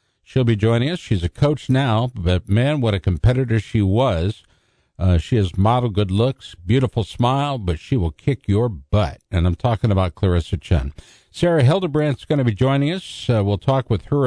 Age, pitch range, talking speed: 60-79, 95-120 Hz, 200 wpm